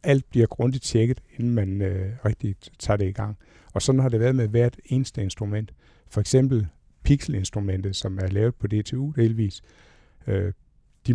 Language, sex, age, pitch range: Danish, male, 60-79, 100-125 Hz